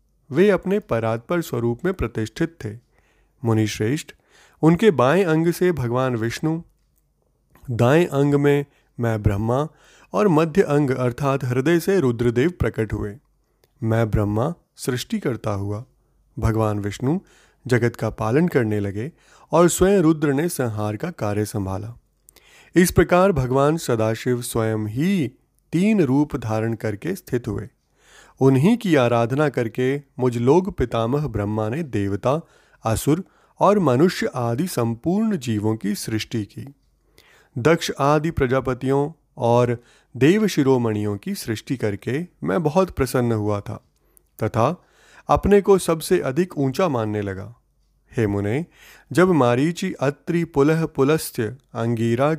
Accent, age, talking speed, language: native, 30-49, 120 wpm, Hindi